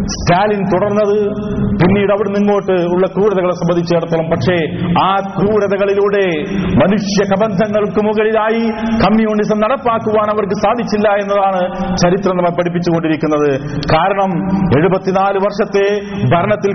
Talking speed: 100 wpm